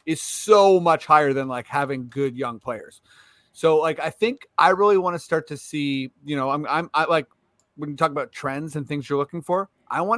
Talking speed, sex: 230 wpm, male